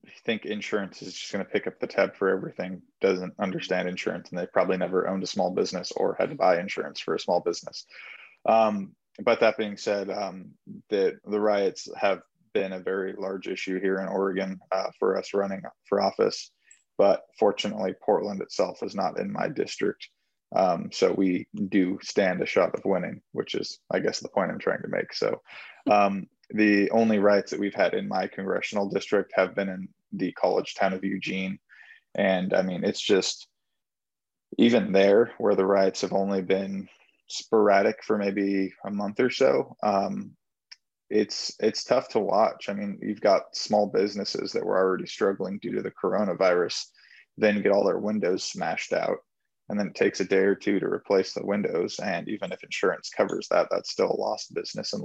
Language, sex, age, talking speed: English, male, 20-39, 190 wpm